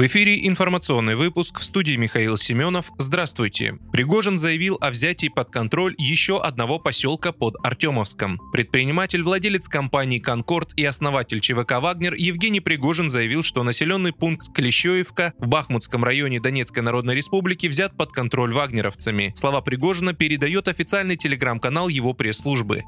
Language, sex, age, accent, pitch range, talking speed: Russian, male, 20-39, native, 125-175 Hz, 135 wpm